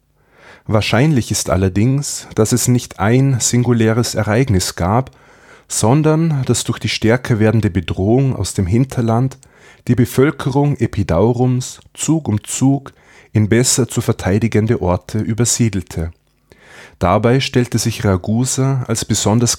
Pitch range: 100-125 Hz